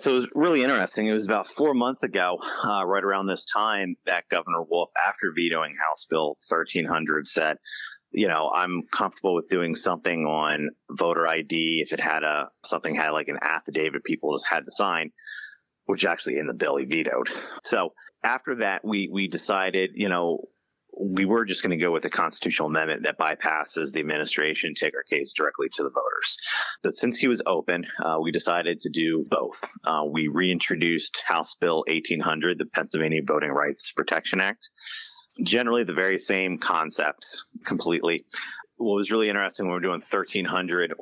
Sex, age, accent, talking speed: male, 30-49, American, 180 wpm